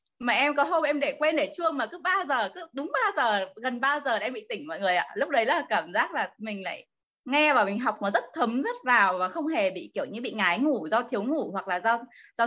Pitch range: 220-300 Hz